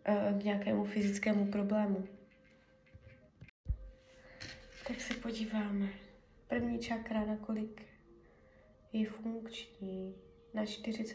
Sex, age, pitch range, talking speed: female, 20-39, 200-230 Hz, 70 wpm